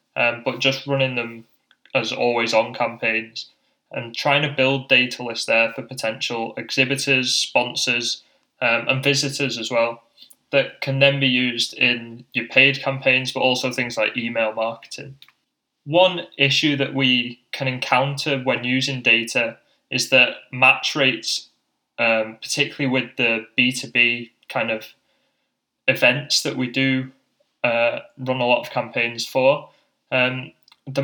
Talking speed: 140 wpm